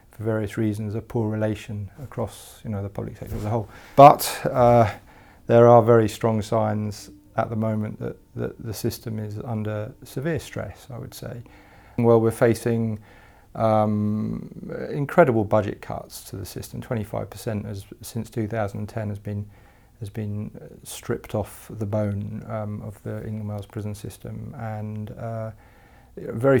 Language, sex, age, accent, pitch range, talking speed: English, male, 40-59, British, 105-120 Hz, 150 wpm